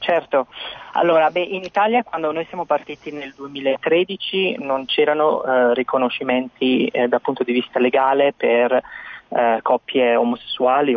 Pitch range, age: 130-170 Hz, 20-39